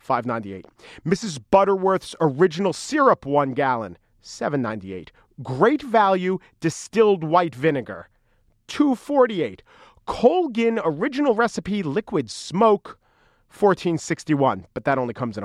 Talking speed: 95 wpm